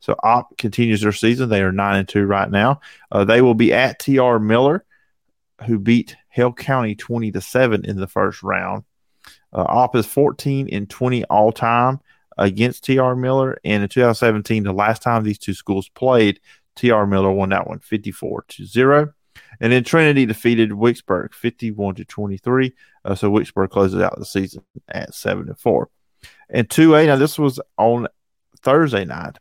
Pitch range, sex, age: 100-125 Hz, male, 30-49